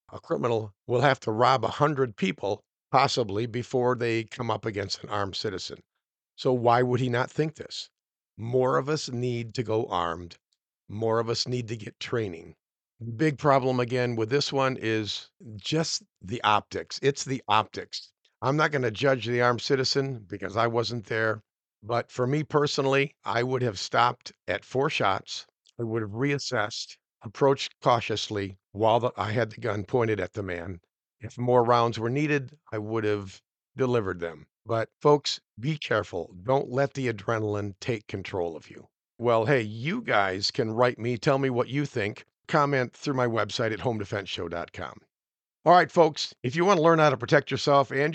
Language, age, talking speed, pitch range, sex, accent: English, 50-69, 180 wpm, 110-135 Hz, male, American